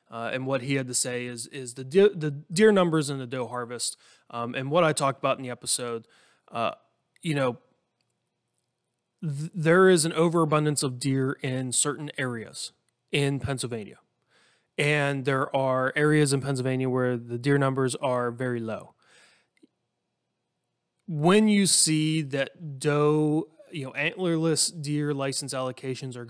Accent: American